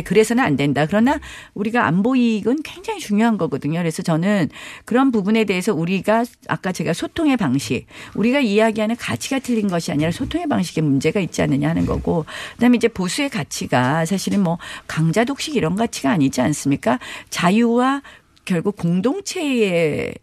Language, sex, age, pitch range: Korean, female, 50-69, 150-220 Hz